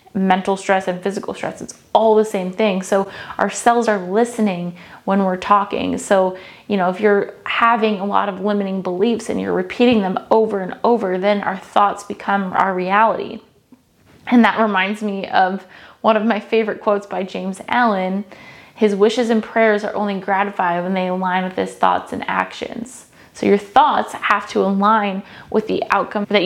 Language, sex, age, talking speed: English, female, 20-39, 180 wpm